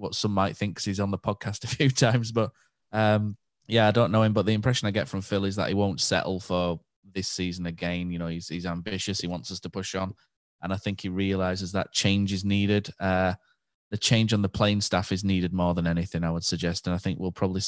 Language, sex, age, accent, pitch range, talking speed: English, male, 20-39, British, 90-100 Hz, 255 wpm